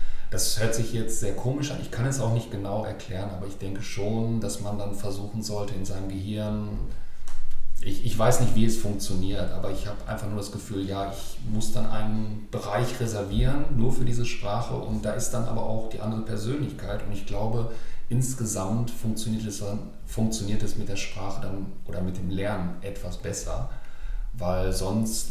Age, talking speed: 40-59, 185 wpm